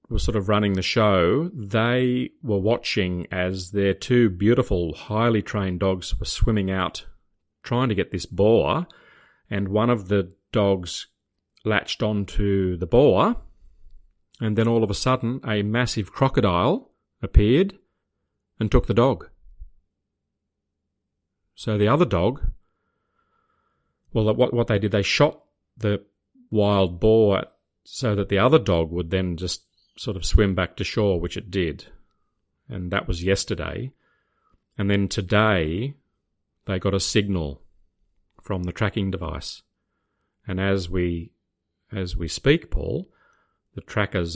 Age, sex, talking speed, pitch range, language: 40-59, male, 140 wpm, 85-105 Hz, English